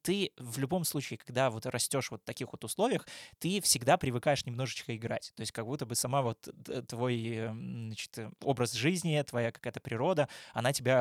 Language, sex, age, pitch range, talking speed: Russian, male, 20-39, 120-145 Hz, 175 wpm